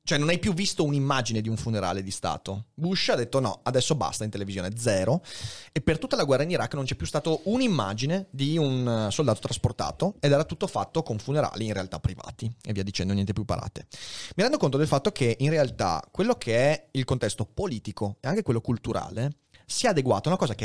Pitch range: 110-150 Hz